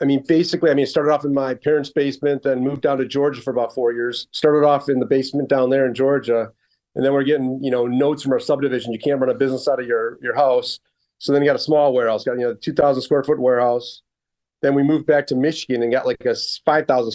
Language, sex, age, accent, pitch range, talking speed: English, male, 40-59, American, 130-150 Hz, 265 wpm